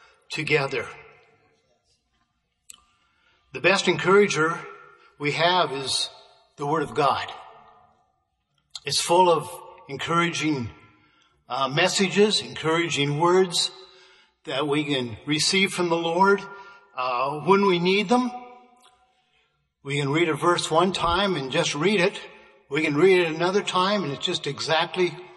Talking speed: 125 wpm